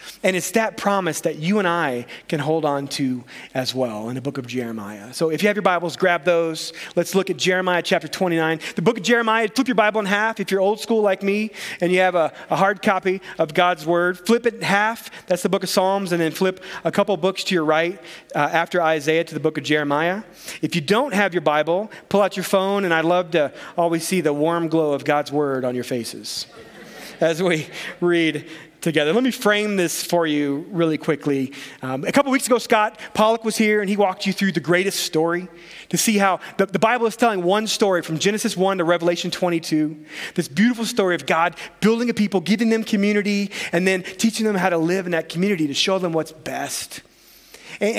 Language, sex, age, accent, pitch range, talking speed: English, male, 30-49, American, 160-205 Hz, 225 wpm